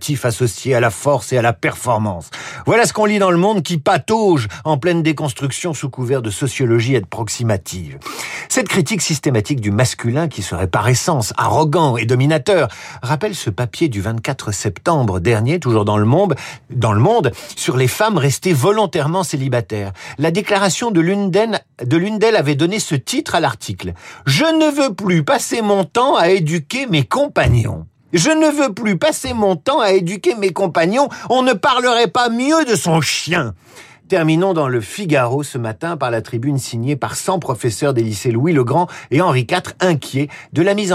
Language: French